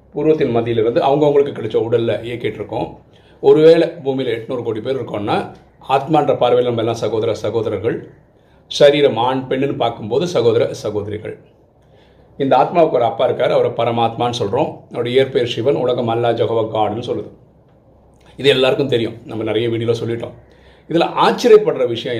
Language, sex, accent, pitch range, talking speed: Tamil, male, native, 115-155 Hz, 130 wpm